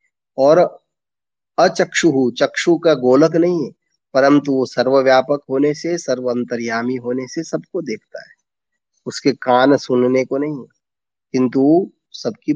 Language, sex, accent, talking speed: Hindi, male, native, 125 wpm